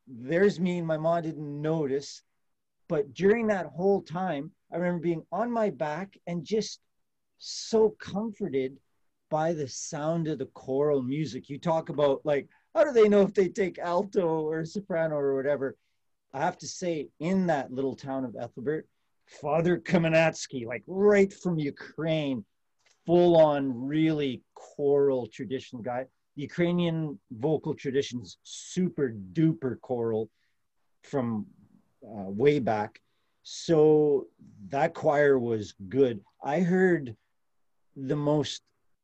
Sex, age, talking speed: male, 40-59, 130 wpm